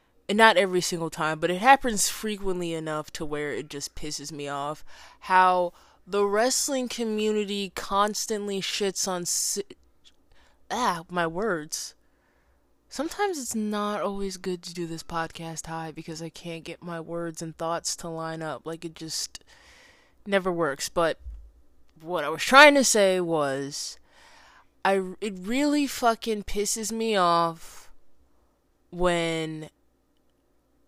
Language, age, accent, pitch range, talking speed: English, 20-39, American, 170-215 Hz, 135 wpm